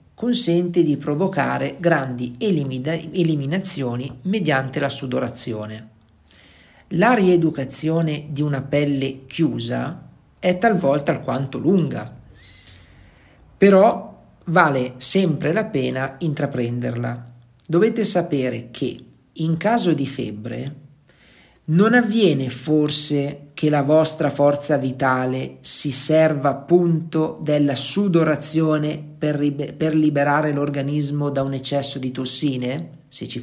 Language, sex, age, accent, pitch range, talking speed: Italian, male, 50-69, native, 130-165 Hz, 100 wpm